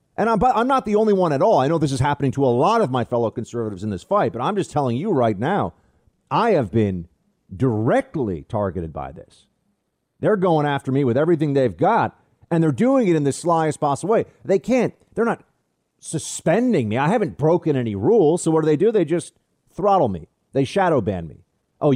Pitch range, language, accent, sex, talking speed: 130-175 Hz, English, American, male, 220 wpm